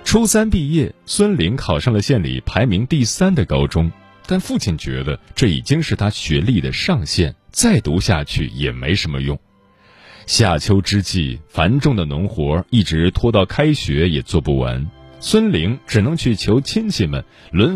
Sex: male